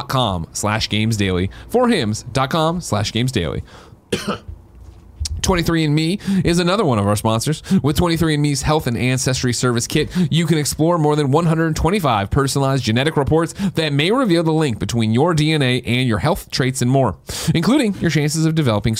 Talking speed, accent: 150 wpm, American